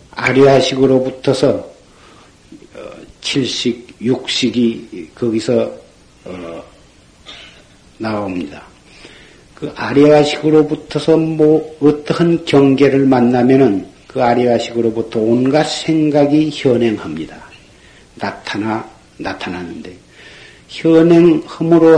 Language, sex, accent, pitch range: Korean, male, native, 125-170 Hz